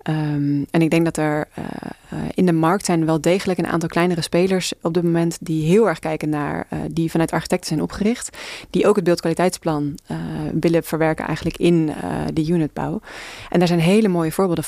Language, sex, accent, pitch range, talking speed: Dutch, female, Dutch, 160-185 Hz, 200 wpm